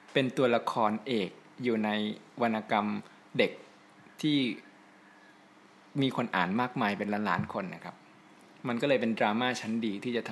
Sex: male